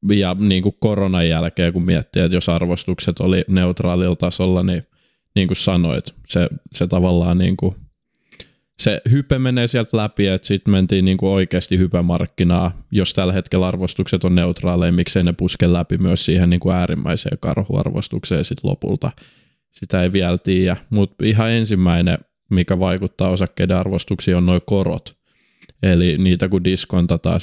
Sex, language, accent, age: male, Finnish, native, 20-39